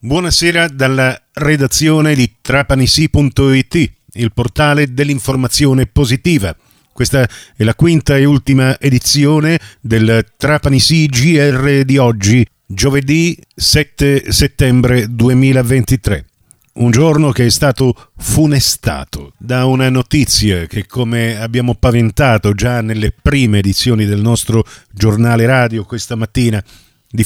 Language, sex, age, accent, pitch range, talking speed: Italian, male, 40-59, native, 110-135 Hz, 110 wpm